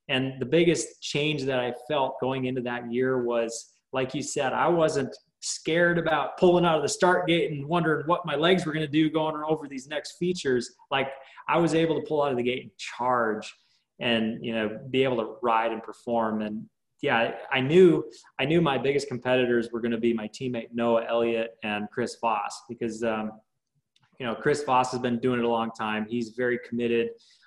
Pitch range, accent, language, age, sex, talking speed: 115-140 Hz, American, English, 20-39, male, 210 wpm